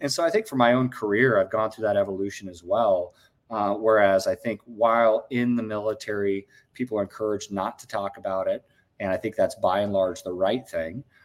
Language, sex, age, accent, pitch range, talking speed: English, male, 30-49, American, 95-125 Hz, 220 wpm